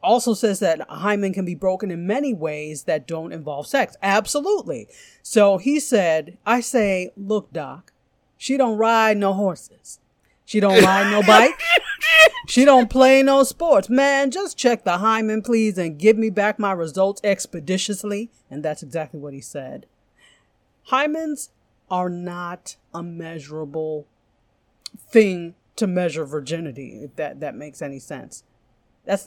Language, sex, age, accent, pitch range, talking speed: English, female, 40-59, American, 160-245 Hz, 150 wpm